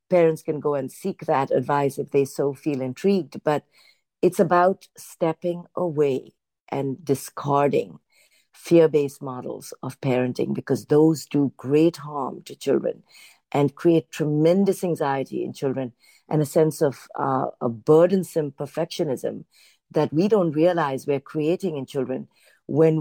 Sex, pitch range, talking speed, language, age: female, 140-175 Hz, 140 wpm, English, 50-69